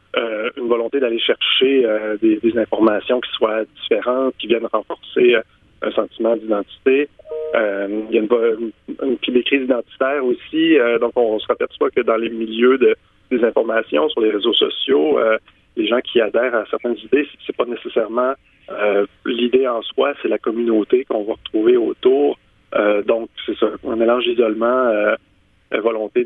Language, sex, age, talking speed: French, male, 30-49, 185 wpm